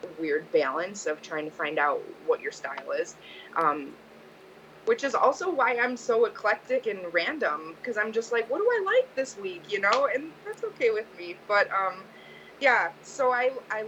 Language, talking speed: English, 190 wpm